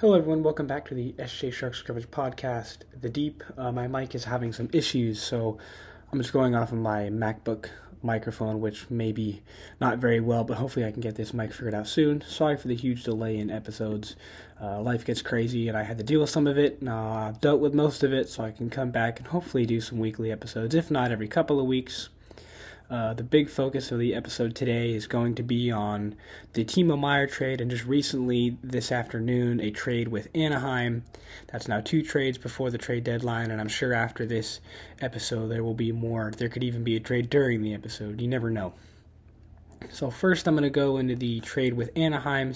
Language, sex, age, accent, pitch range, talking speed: English, male, 20-39, American, 110-135 Hz, 220 wpm